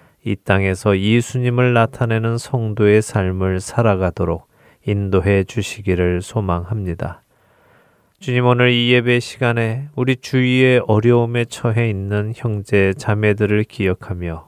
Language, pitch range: Korean, 95-120 Hz